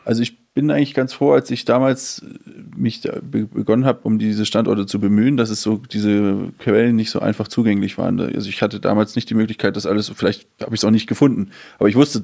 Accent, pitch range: German, 105-120 Hz